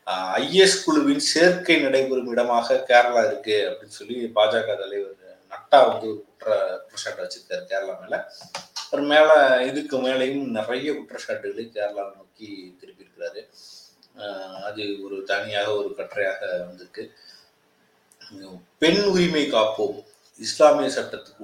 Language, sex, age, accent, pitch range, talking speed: Tamil, male, 30-49, native, 110-155 Hz, 110 wpm